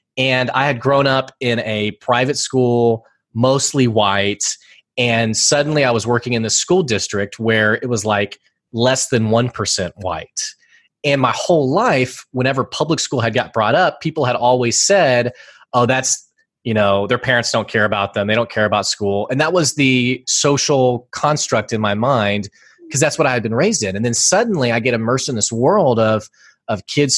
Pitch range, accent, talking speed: 110-135 Hz, American, 190 wpm